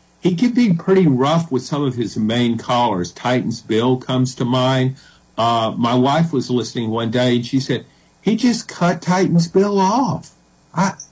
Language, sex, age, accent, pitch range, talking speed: English, male, 50-69, American, 130-165 Hz, 180 wpm